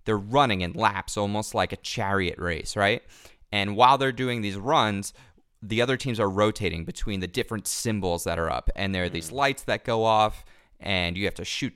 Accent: American